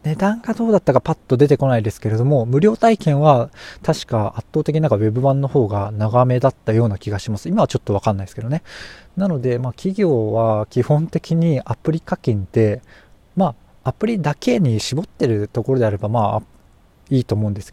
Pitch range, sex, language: 115-160 Hz, male, Japanese